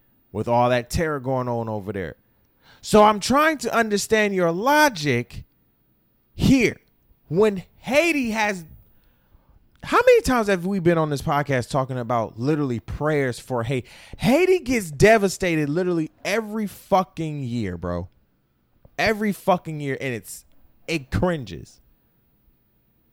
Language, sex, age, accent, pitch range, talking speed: English, male, 30-49, American, 130-215 Hz, 125 wpm